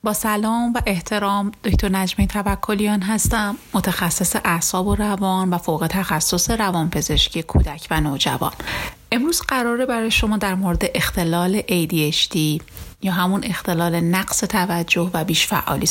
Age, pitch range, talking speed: 30-49, 170-215 Hz, 130 wpm